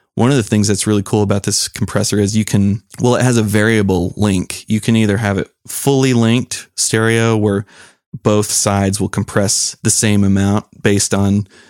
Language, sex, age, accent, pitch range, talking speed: English, male, 30-49, American, 100-115 Hz, 190 wpm